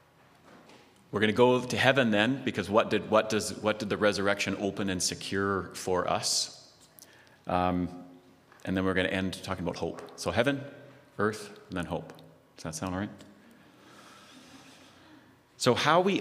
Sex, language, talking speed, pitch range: male, English, 165 wpm, 90-110 Hz